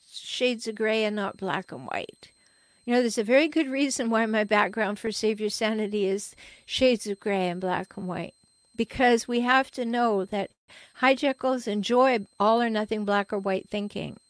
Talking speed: 185 wpm